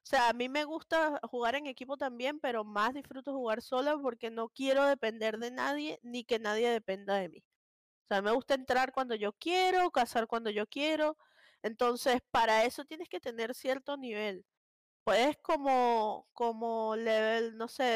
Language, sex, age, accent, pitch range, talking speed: Spanish, female, 20-39, American, 225-290 Hz, 175 wpm